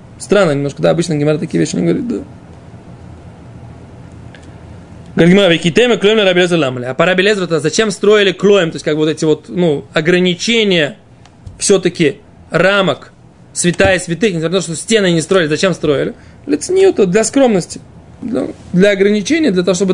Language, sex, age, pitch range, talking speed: Russian, male, 20-39, 150-200 Hz, 155 wpm